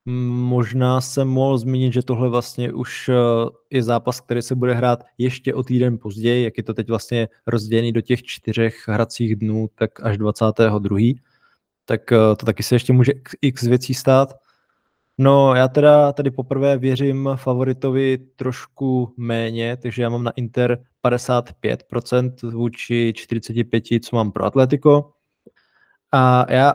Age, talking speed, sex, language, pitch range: 20-39, 145 wpm, male, Czech, 120-130 Hz